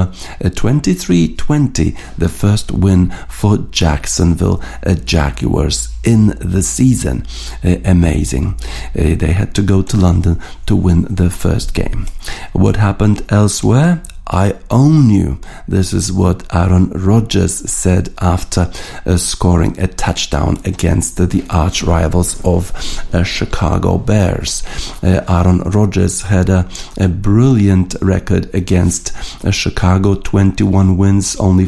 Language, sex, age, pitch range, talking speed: English, male, 50-69, 90-100 Hz, 125 wpm